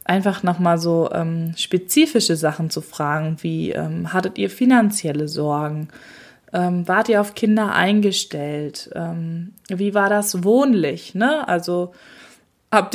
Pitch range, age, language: 170-220 Hz, 20-39, German